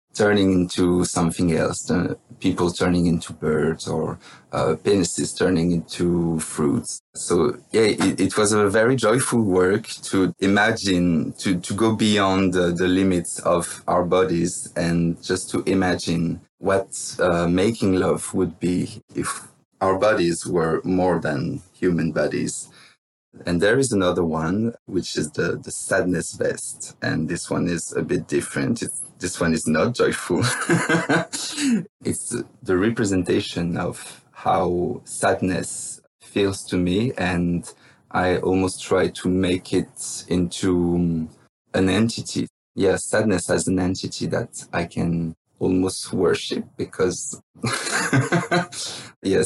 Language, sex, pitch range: English, male, 85-100 Hz